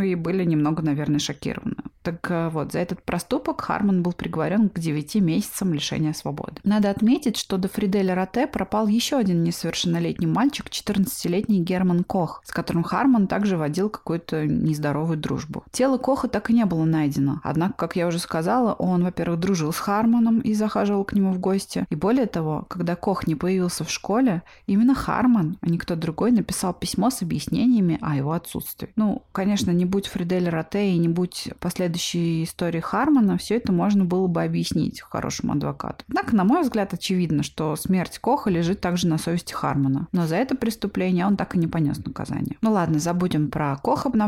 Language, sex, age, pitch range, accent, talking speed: Russian, female, 20-39, 160-205 Hz, native, 180 wpm